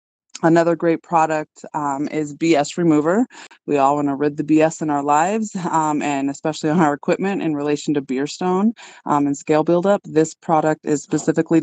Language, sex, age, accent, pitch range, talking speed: English, female, 20-39, American, 145-175 Hz, 185 wpm